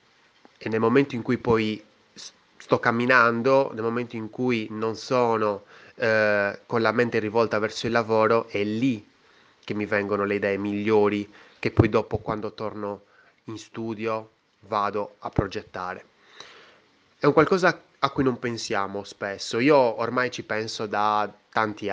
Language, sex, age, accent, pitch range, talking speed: Italian, male, 20-39, native, 105-120 Hz, 150 wpm